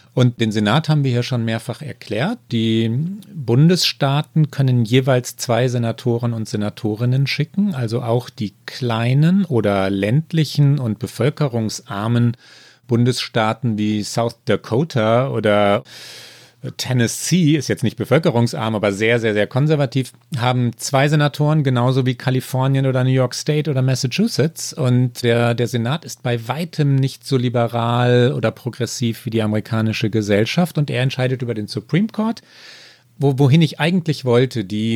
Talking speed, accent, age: 140 wpm, German, 40-59